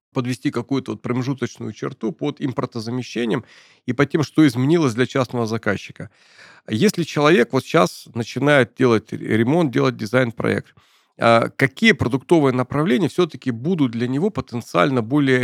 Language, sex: Russian, male